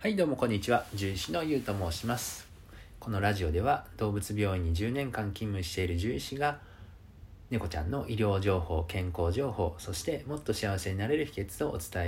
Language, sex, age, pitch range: Japanese, male, 40-59, 85-110 Hz